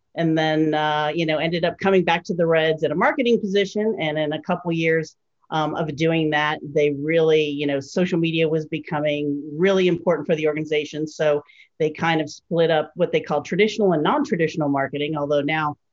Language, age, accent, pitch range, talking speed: English, 40-59, American, 150-170 Hz, 200 wpm